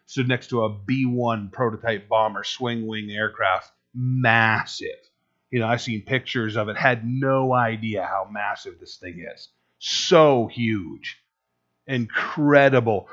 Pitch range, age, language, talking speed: 105-140 Hz, 30-49, English, 130 wpm